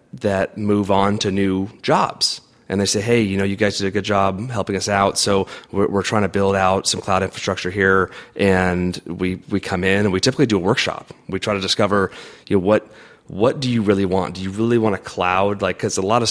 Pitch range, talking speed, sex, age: 90-105 Hz, 245 wpm, male, 30-49